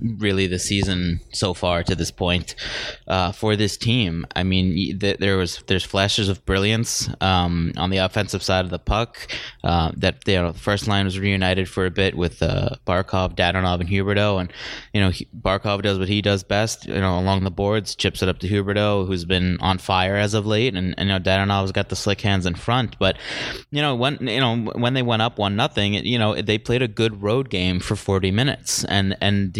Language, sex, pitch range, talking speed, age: English, male, 95-105 Hz, 225 wpm, 20-39